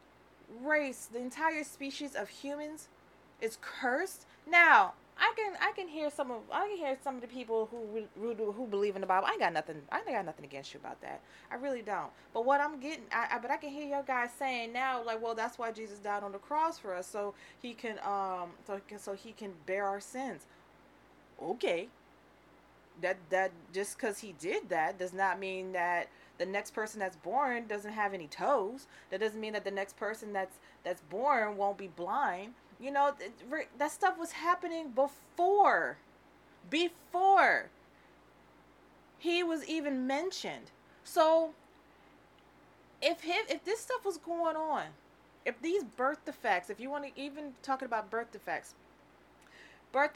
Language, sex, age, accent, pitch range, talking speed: English, female, 20-39, American, 205-300 Hz, 175 wpm